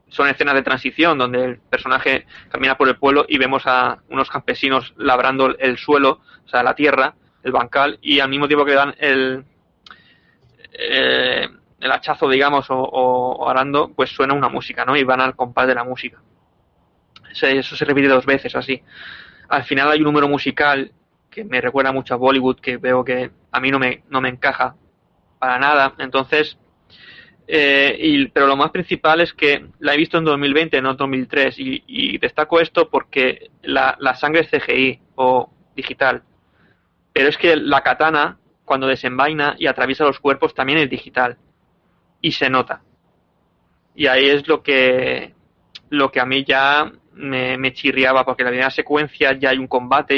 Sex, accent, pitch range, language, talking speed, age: male, Spanish, 130-145 Hz, Spanish, 180 wpm, 20-39